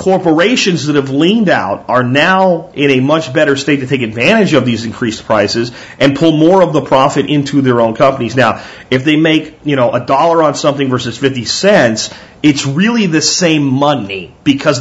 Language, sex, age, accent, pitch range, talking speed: English, male, 40-59, American, 130-170 Hz, 195 wpm